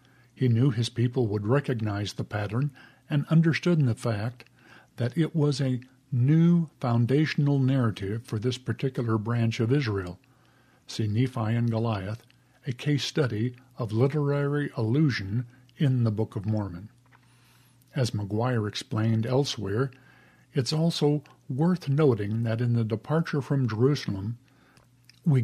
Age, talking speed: 50-69, 130 wpm